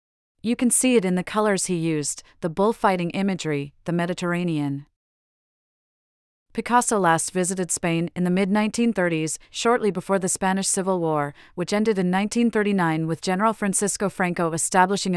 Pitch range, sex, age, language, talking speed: 165-200 Hz, female, 30-49, English, 145 wpm